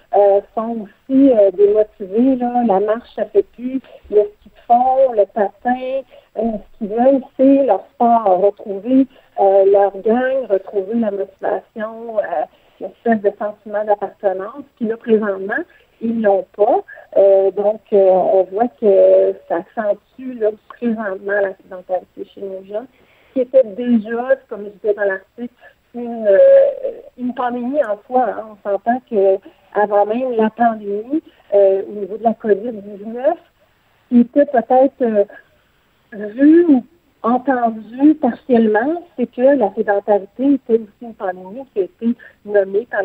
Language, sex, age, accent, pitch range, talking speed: French, female, 50-69, French, 200-255 Hz, 145 wpm